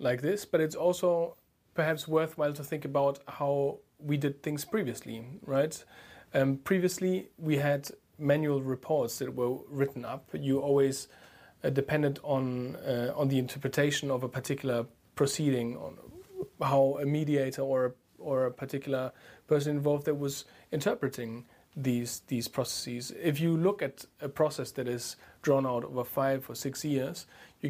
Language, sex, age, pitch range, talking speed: English, male, 30-49, 125-150 Hz, 155 wpm